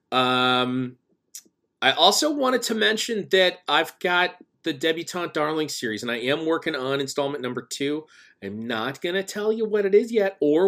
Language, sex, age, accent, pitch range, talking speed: English, male, 40-59, American, 115-160 Hz, 180 wpm